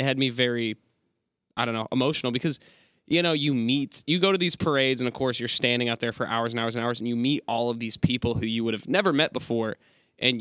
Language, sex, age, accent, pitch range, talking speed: English, male, 20-39, American, 115-130 Hz, 265 wpm